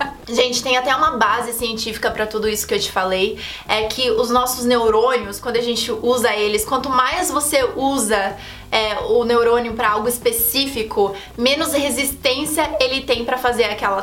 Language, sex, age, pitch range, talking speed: Portuguese, female, 20-39, 230-290 Hz, 170 wpm